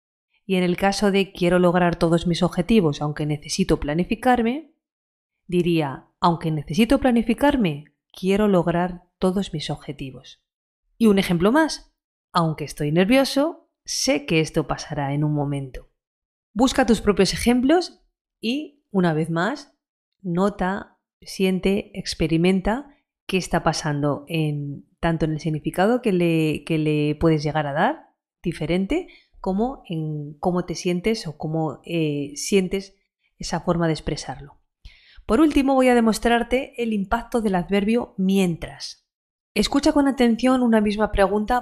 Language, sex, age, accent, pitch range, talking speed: Spanish, female, 30-49, Spanish, 165-230 Hz, 130 wpm